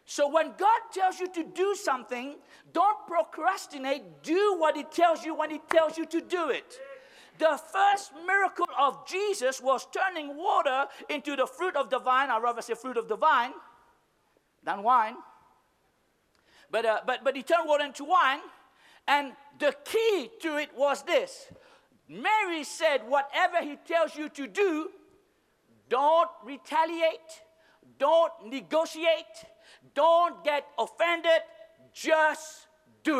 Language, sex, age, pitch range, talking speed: English, male, 60-79, 285-345 Hz, 140 wpm